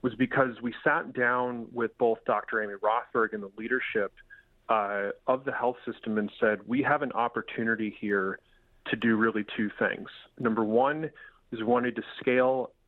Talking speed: 175 wpm